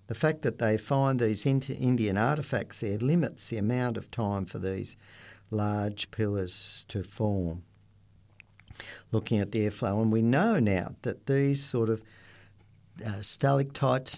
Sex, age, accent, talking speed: male, 50-69, Australian, 145 wpm